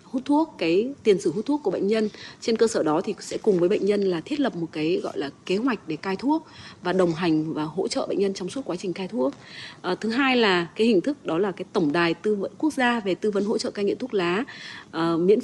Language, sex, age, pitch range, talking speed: Vietnamese, female, 20-39, 175-230 Hz, 285 wpm